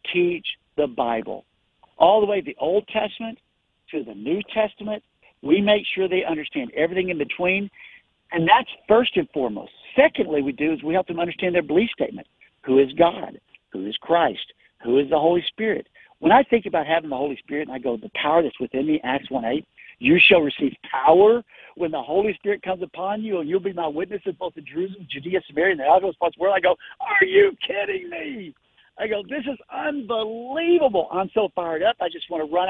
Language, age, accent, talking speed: English, 60-79, American, 210 wpm